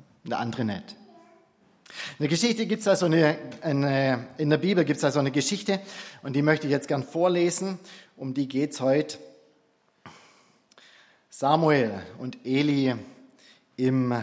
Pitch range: 135-175 Hz